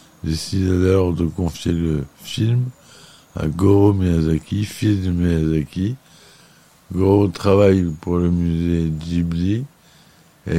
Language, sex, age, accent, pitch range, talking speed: French, male, 60-79, French, 80-95 Hz, 110 wpm